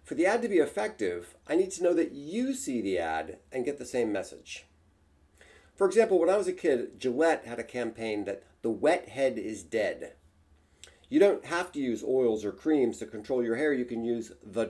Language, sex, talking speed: English, male, 215 wpm